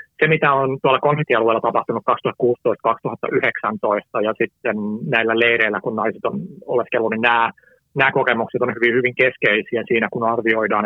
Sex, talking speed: male, 145 wpm